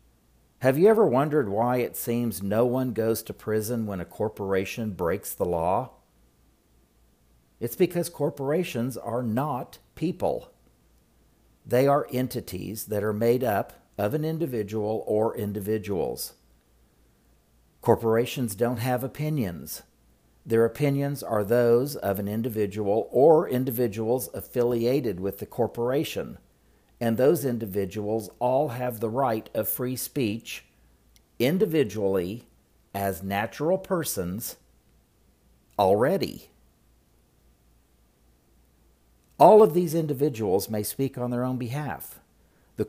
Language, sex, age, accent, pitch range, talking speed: English, male, 50-69, American, 100-130 Hz, 110 wpm